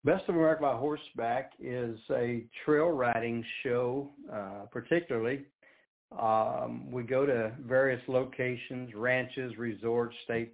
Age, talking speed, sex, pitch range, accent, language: 60-79, 120 wpm, male, 110-130 Hz, American, English